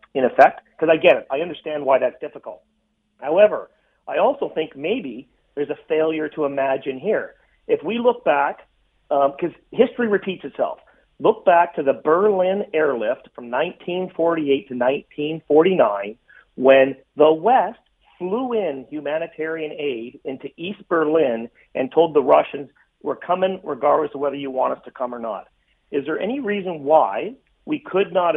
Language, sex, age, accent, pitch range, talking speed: English, male, 40-59, American, 140-195 Hz, 160 wpm